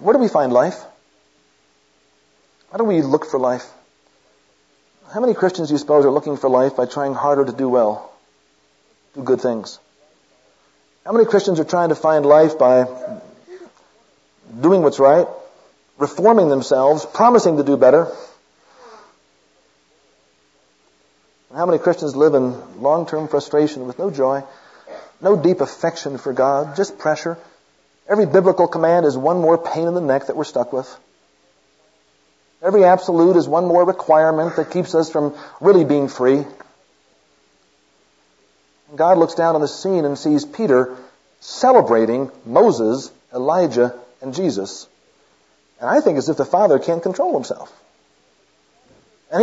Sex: male